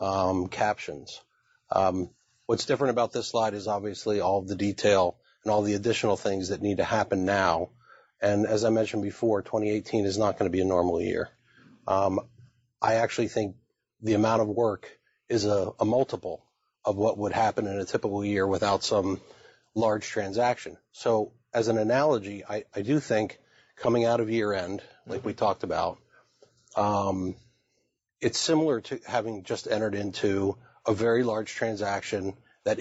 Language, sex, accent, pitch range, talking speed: English, male, American, 100-115 Hz, 165 wpm